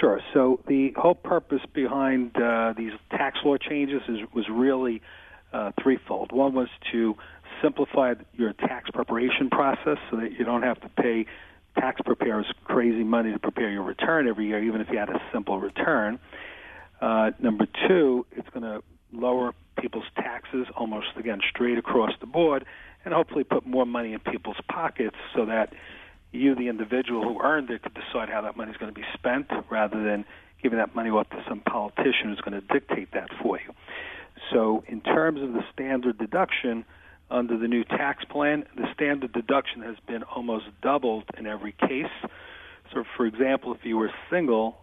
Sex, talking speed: male, 175 wpm